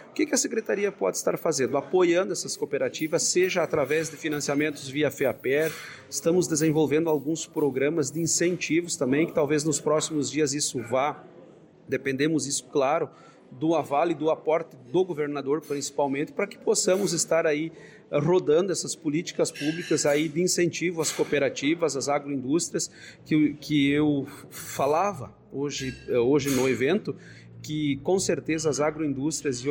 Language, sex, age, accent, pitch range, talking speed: Portuguese, male, 40-59, Brazilian, 145-175 Hz, 145 wpm